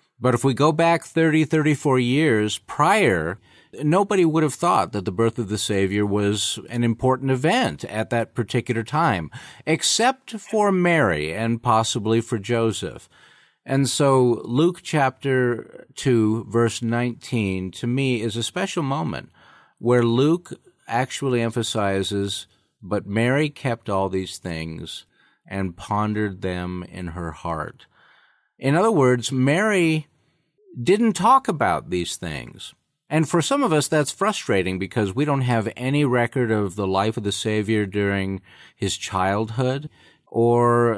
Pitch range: 105-140 Hz